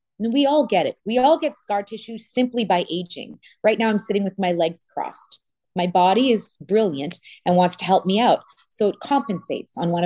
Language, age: English, 20-39